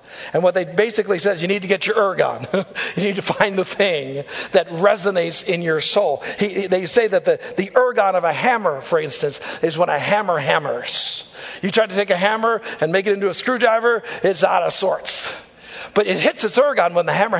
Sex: male